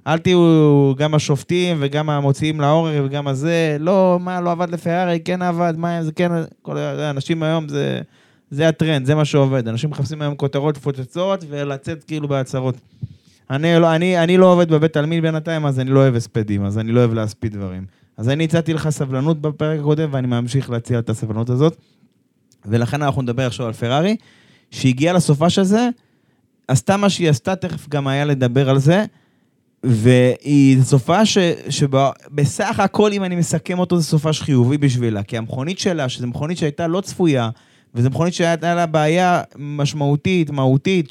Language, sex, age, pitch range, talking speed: Hebrew, male, 20-39, 135-170 Hz, 160 wpm